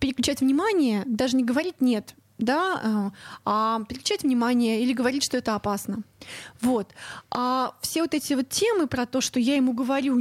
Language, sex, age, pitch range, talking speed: Russian, female, 20-39, 235-290 Hz, 170 wpm